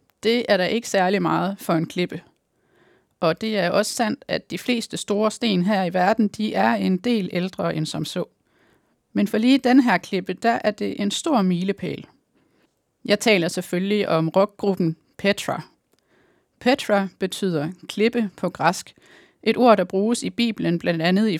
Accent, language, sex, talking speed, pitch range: native, Danish, female, 175 wpm, 180-220 Hz